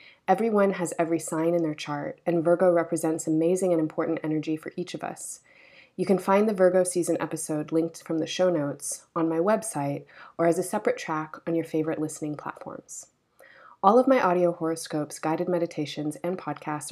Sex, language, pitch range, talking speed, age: female, English, 160-180 Hz, 185 wpm, 20-39